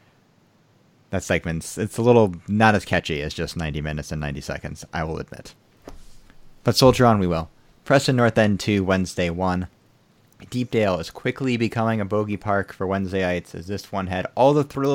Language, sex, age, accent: English, male, 30-49, American